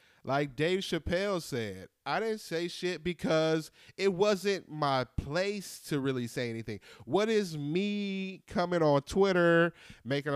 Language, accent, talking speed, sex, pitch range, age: English, American, 140 wpm, male, 125-175 Hz, 30-49